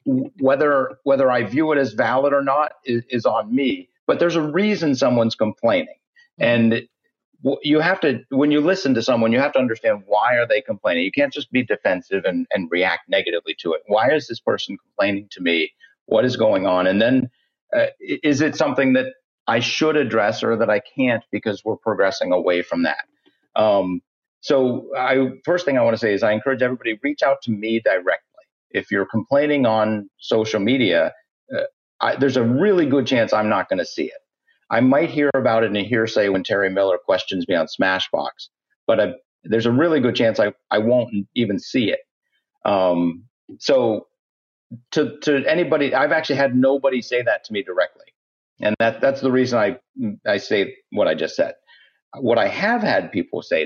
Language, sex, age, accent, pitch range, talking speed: English, male, 50-69, American, 115-190 Hz, 195 wpm